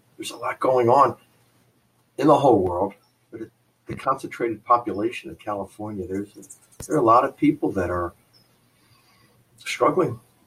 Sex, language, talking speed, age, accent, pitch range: male, English, 130 wpm, 50-69, American, 95-120 Hz